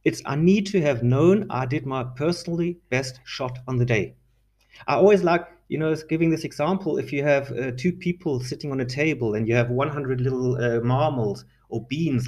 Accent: German